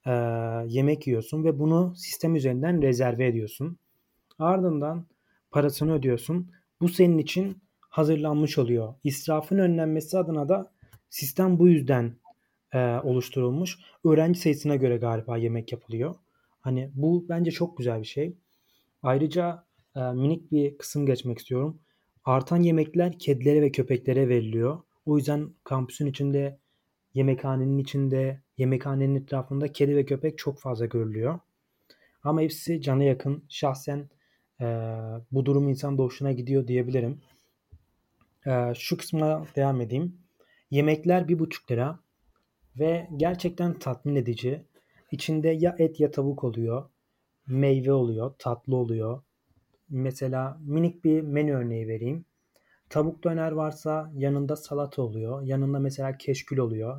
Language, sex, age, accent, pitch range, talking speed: Turkish, male, 30-49, native, 130-155 Hz, 120 wpm